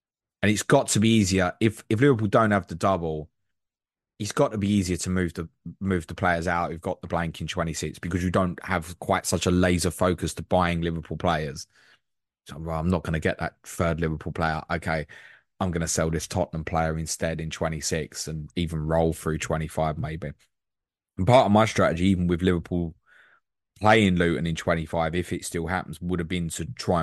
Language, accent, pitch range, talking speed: English, British, 85-110 Hz, 205 wpm